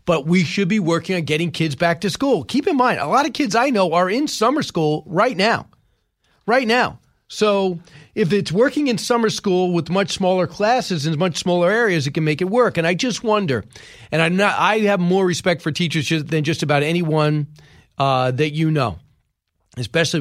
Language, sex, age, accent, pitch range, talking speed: English, male, 40-59, American, 145-190 Hz, 205 wpm